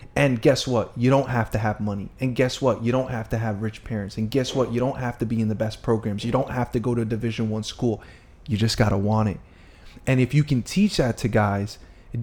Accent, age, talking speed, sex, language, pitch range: American, 20-39, 275 wpm, male, English, 110-140 Hz